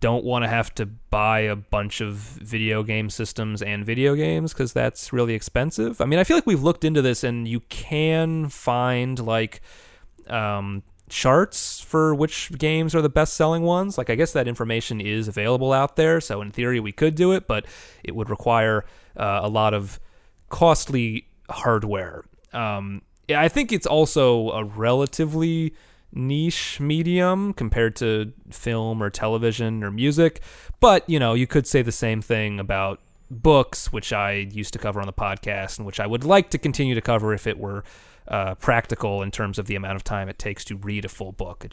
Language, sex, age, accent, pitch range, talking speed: English, male, 30-49, American, 100-135 Hz, 190 wpm